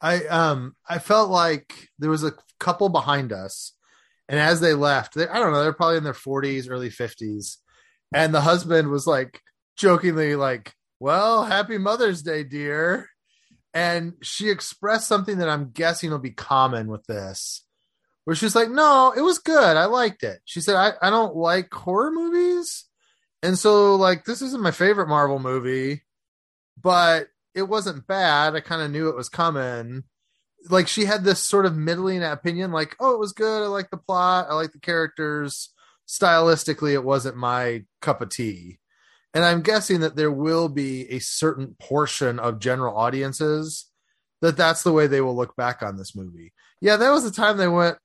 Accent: American